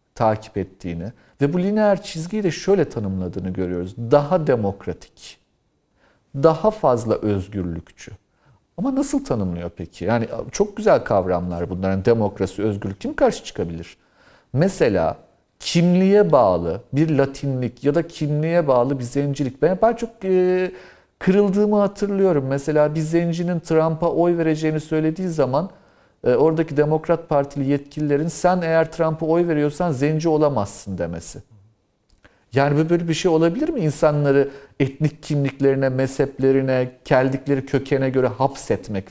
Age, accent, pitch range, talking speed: 50-69, native, 120-170 Hz, 120 wpm